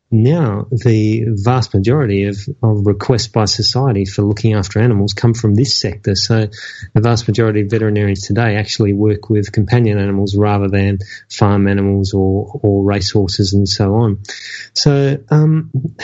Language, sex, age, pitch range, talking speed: English, male, 30-49, 100-120 Hz, 155 wpm